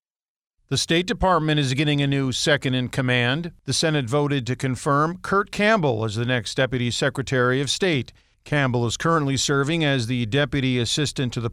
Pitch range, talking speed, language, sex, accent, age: 130-160 Hz, 175 wpm, English, male, American, 50-69